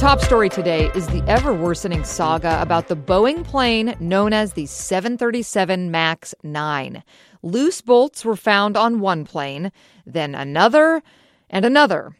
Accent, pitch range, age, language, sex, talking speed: American, 170-225 Hz, 30-49, English, female, 140 wpm